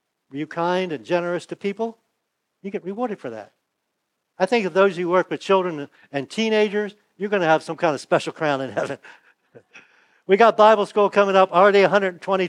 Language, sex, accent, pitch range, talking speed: English, male, American, 150-200 Hz, 205 wpm